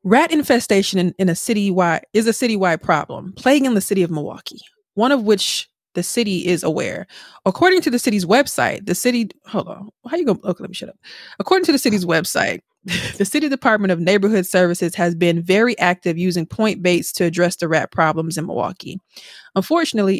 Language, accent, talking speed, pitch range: English, American, 195 wpm, 175-215 Hz